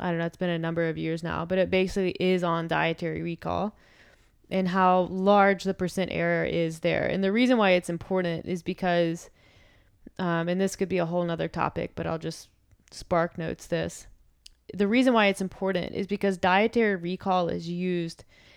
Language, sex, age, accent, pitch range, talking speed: English, female, 20-39, American, 165-185 Hz, 190 wpm